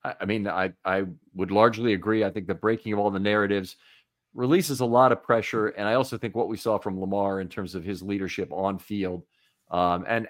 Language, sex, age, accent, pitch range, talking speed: English, male, 40-59, American, 95-115 Hz, 220 wpm